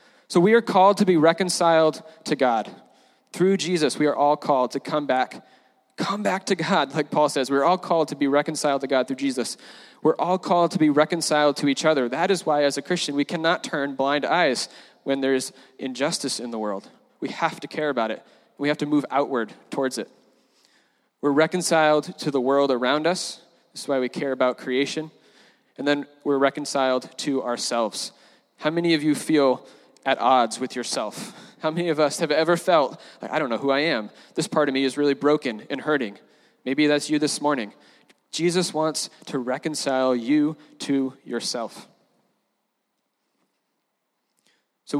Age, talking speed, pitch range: 20-39, 185 wpm, 140-180 Hz